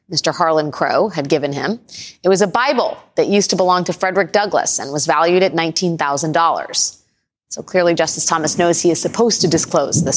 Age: 30-49